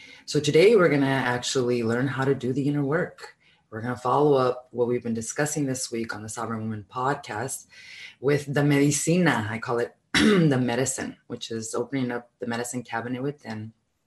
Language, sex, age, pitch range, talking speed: English, female, 20-39, 115-135 Hz, 190 wpm